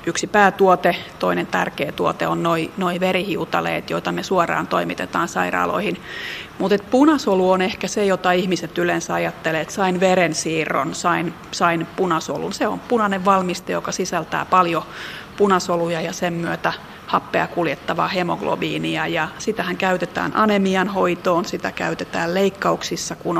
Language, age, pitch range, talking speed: Finnish, 30-49, 170-190 Hz, 130 wpm